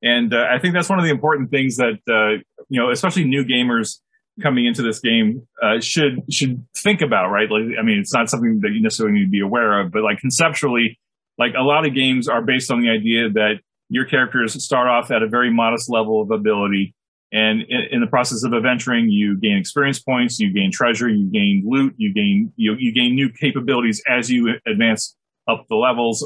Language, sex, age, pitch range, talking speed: English, male, 30-49, 115-185 Hz, 220 wpm